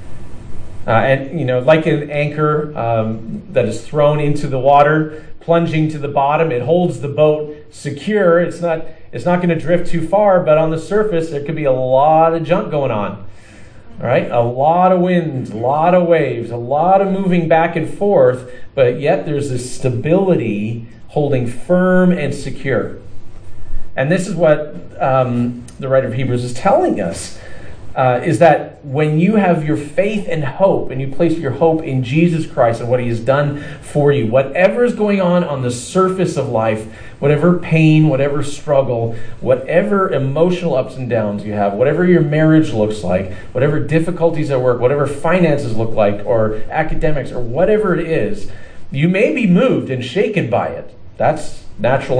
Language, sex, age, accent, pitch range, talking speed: English, male, 40-59, American, 120-165 Hz, 180 wpm